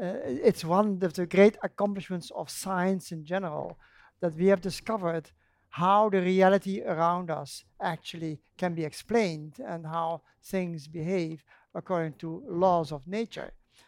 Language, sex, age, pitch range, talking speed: English, male, 60-79, 165-200 Hz, 145 wpm